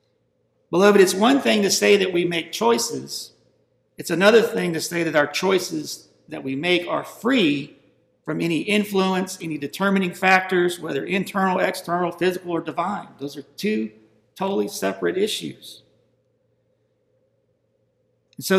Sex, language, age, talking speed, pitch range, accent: male, English, 50-69, 135 wpm, 135-195 Hz, American